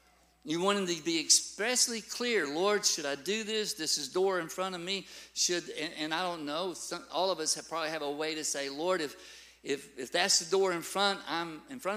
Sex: male